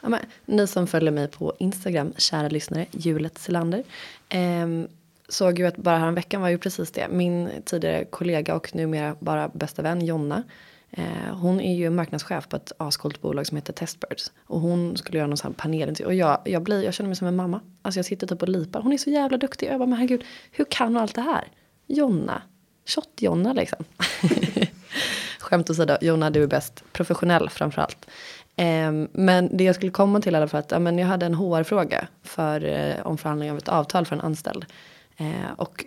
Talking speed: 195 wpm